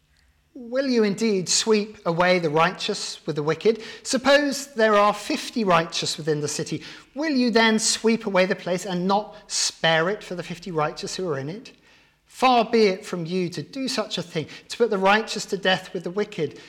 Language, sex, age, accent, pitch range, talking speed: English, male, 50-69, British, 155-215 Hz, 200 wpm